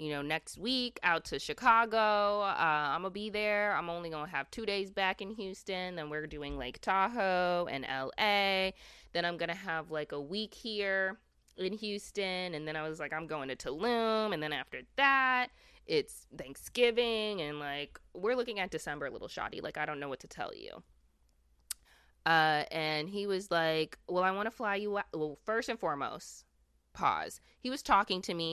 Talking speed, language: 195 wpm, English